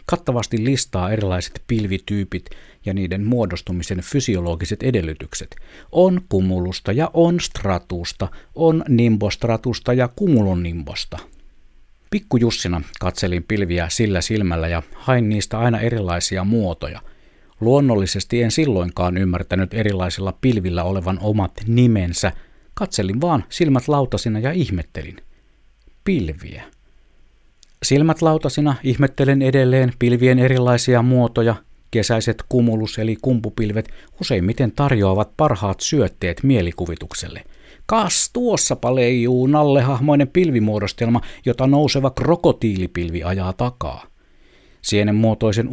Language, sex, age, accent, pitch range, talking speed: Finnish, male, 50-69, native, 95-130 Hz, 95 wpm